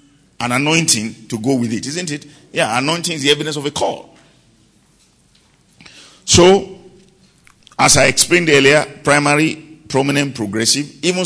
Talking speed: 135 wpm